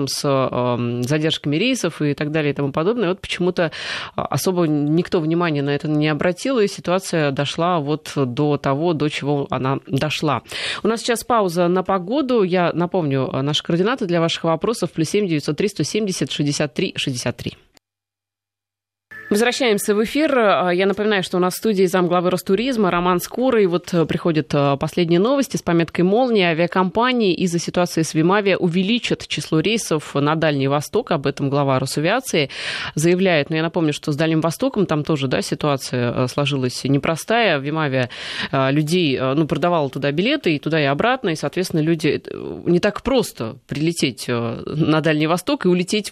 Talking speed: 155 wpm